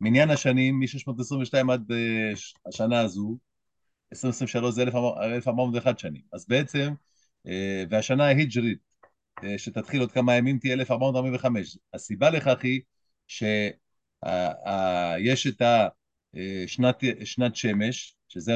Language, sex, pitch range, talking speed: Hebrew, male, 110-135 Hz, 105 wpm